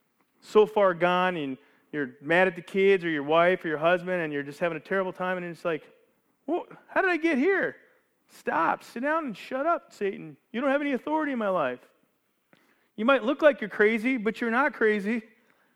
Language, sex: English, male